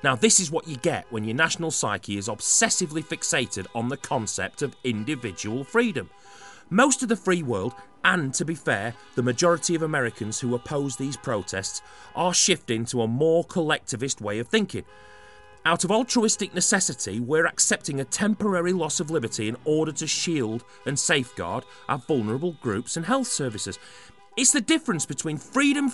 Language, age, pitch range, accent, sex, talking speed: English, 30-49, 115-175 Hz, British, male, 170 wpm